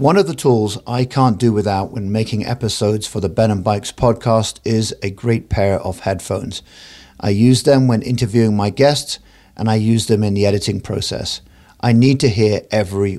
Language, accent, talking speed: English, British, 195 wpm